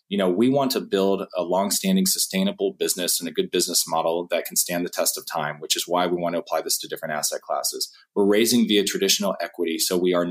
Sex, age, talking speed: male, 20-39, 245 wpm